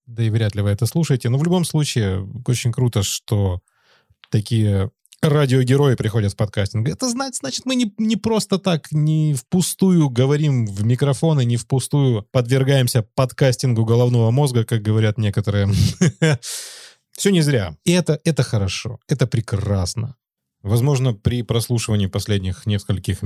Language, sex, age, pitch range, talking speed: Russian, male, 20-39, 100-125 Hz, 140 wpm